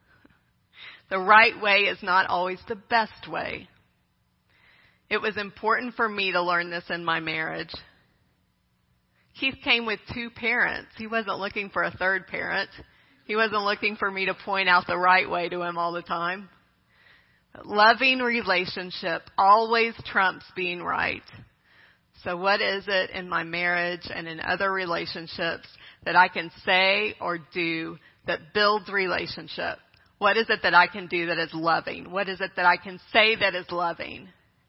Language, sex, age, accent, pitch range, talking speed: English, female, 40-59, American, 175-205 Hz, 165 wpm